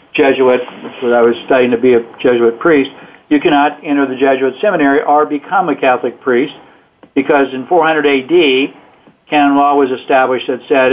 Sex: male